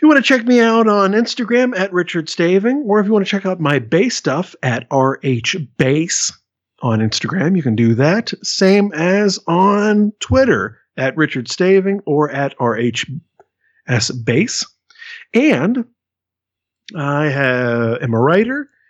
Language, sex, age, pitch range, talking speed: English, male, 50-69, 120-180 Hz, 145 wpm